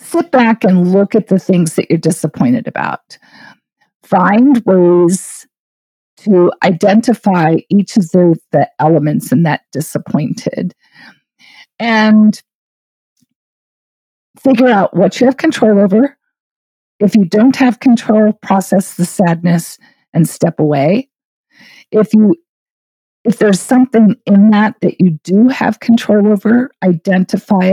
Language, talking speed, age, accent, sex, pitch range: English, 115 wpm, 50-69, American, female, 185-235 Hz